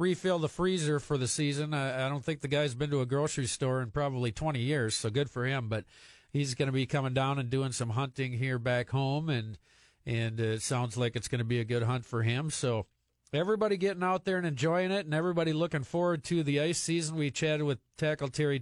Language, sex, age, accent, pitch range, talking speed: English, male, 50-69, American, 130-160 Hz, 240 wpm